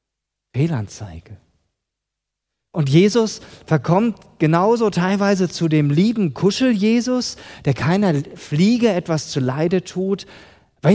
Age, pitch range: 40-59, 115-175 Hz